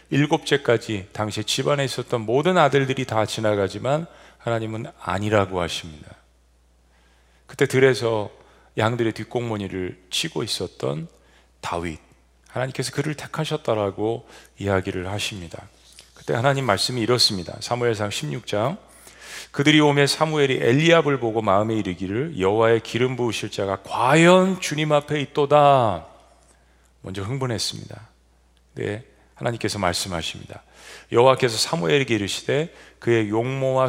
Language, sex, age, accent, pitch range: Korean, male, 40-59, native, 95-135 Hz